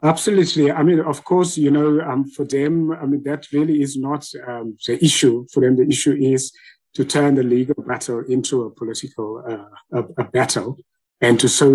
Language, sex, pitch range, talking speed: English, male, 120-145 Hz, 200 wpm